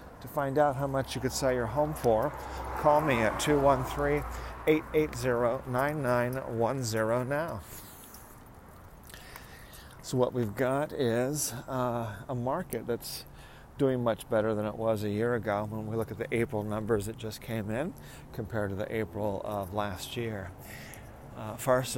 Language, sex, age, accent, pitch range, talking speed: English, male, 50-69, American, 105-130 Hz, 145 wpm